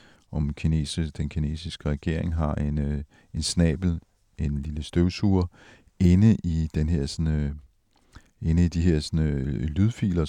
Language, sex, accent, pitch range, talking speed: Danish, male, native, 75-90 Hz, 150 wpm